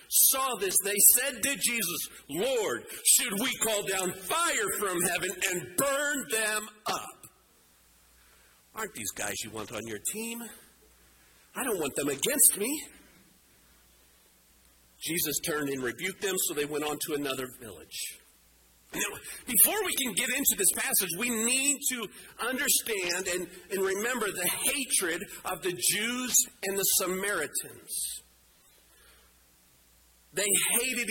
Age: 50-69